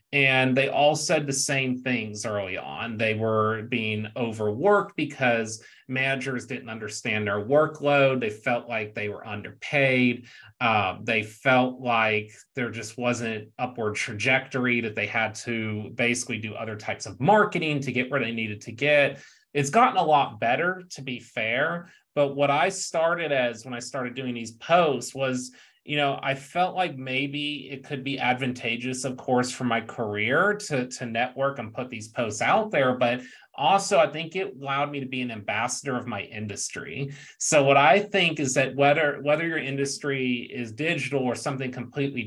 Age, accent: 30-49, American